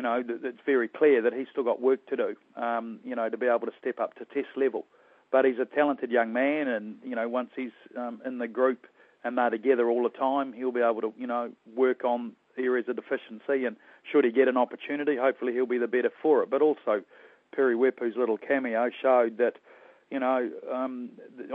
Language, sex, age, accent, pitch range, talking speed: English, male, 40-59, Australian, 120-140 Hz, 220 wpm